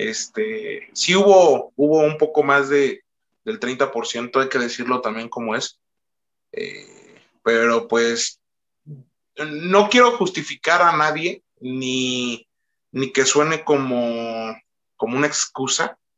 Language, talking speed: Spanish, 120 wpm